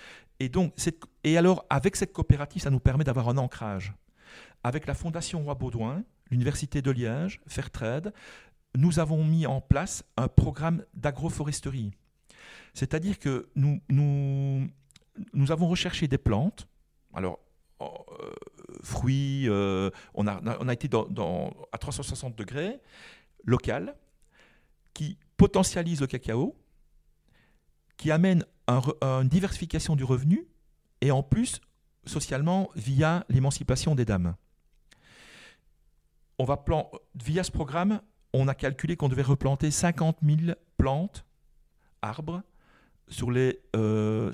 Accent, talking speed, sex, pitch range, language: French, 125 wpm, male, 115-160 Hz, French